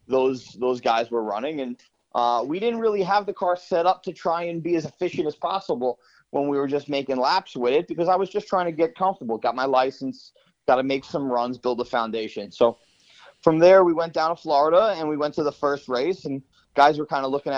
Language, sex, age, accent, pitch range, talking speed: English, male, 30-49, American, 130-180 Hz, 240 wpm